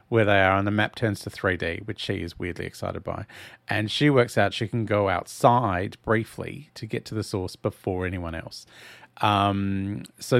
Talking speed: 195 wpm